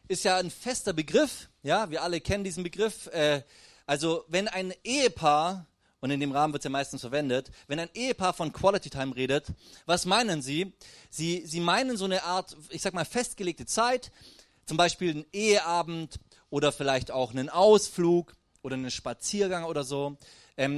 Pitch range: 130-195 Hz